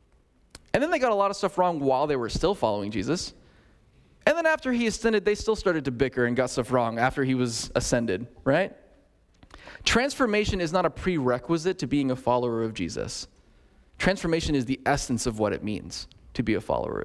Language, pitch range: English, 110-140 Hz